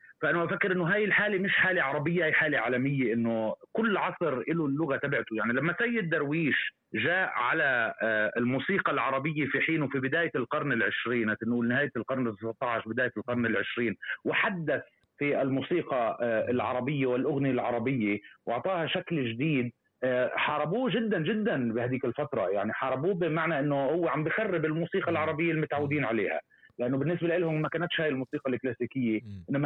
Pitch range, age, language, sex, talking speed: 125-160 Hz, 30-49, Arabic, male, 145 wpm